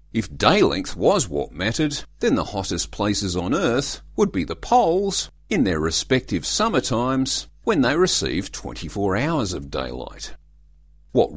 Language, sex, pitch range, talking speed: English, male, 90-150 Hz, 155 wpm